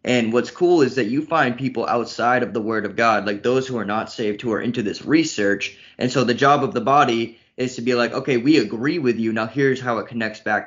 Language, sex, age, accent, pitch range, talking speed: English, male, 20-39, American, 105-120 Hz, 265 wpm